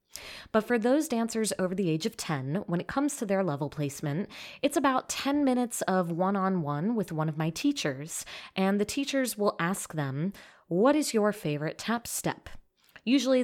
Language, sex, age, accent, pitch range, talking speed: English, female, 20-39, American, 170-225 Hz, 180 wpm